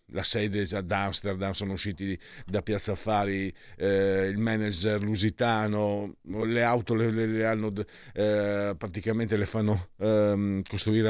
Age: 50-69